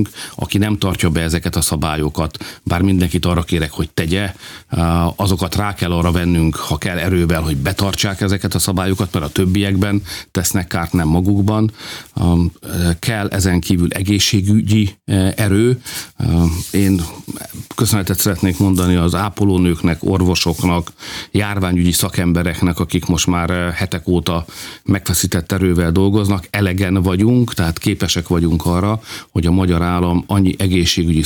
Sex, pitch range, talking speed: male, 85-100 Hz, 125 wpm